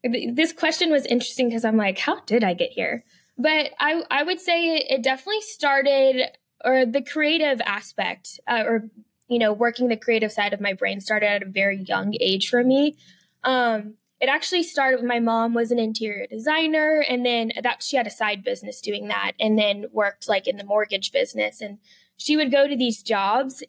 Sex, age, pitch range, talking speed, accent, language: female, 10-29, 220-270 Hz, 200 wpm, American, English